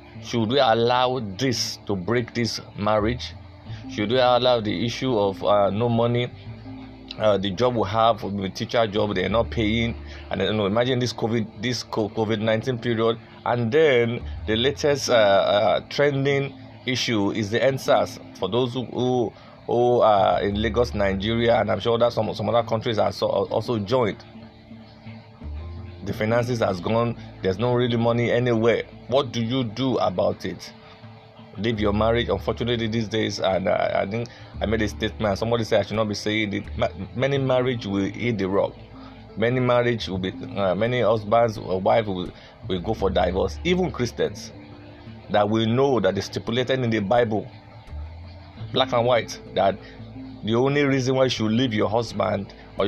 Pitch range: 105-120 Hz